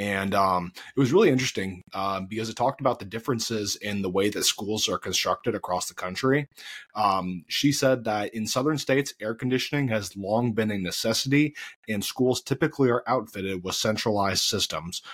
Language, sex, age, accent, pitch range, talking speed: English, male, 30-49, American, 95-120 Hz, 180 wpm